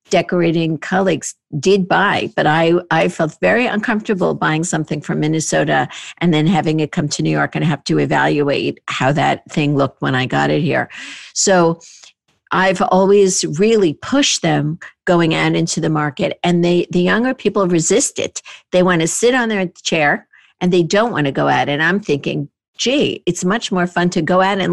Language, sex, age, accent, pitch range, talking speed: English, female, 50-69, American, 160-210 Hz, 190 wpm